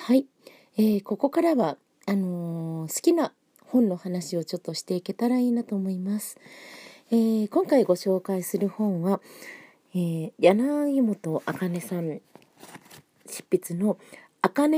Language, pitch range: Japanese, 165-225 Hz